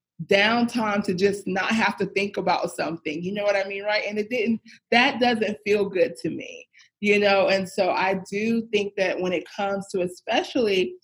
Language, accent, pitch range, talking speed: English, American, 185-225 Hz, 200 wpm